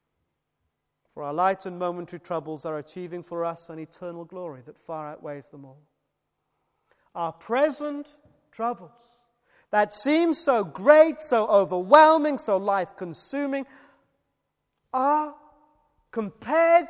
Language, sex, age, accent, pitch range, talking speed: English, male, 30-49, British, 160-255 Hz, 110 wpm